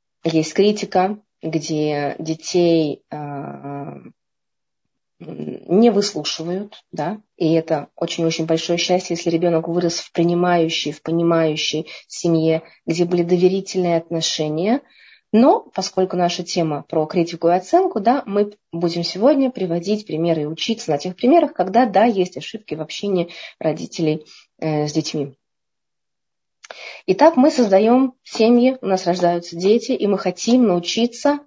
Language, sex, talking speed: Russian, female, 125 wpm